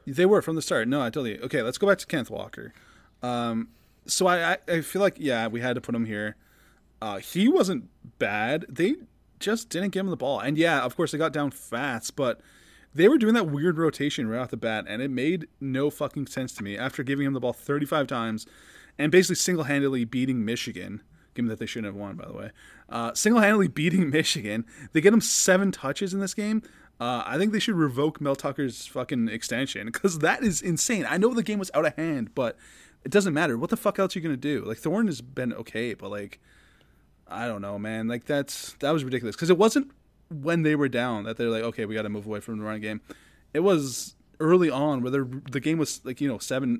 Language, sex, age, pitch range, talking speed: English, male, 20-39, 115-175 Hz, 235 wpm